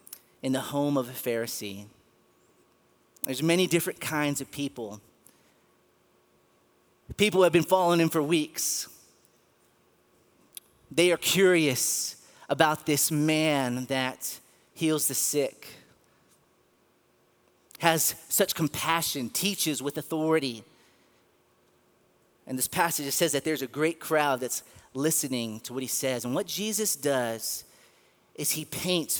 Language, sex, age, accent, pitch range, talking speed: English, male, 30-49, American, 135-185 Hz, 115 wpm